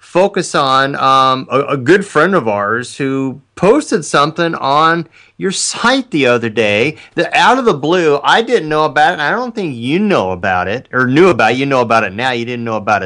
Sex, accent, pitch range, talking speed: male, American, 125-170 Hz, 225 wpm